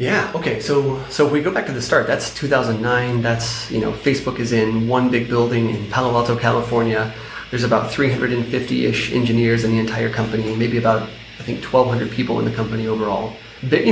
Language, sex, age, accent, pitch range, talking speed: English, male, 30-49, American, 110-125 Hz, 200 wpm